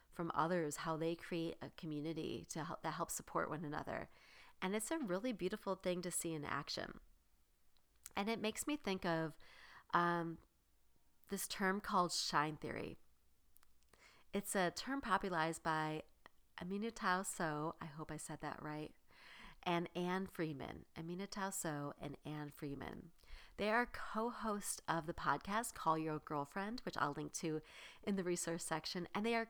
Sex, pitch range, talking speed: female, 150-195 Hz, 155 wpm